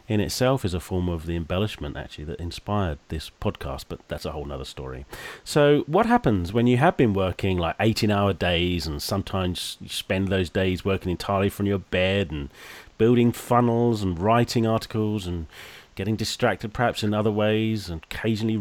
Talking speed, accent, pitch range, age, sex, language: 180 wpm, British, 90-115 Hz, 30-49, male, English